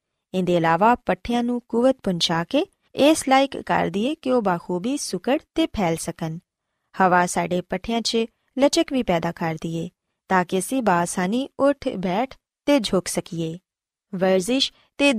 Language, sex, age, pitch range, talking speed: Punjabi, female, 20-39, 180-260 Hz, 150 wpm